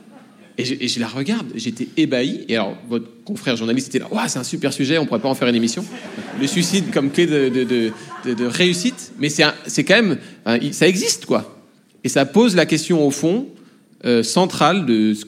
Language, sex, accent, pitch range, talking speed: French, male, French, 125-180 Hz, 235 wpm